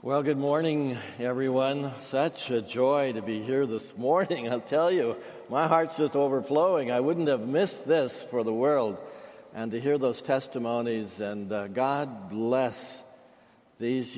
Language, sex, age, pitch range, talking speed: English, male, 60-79, 110-140 Hz, 155 wpm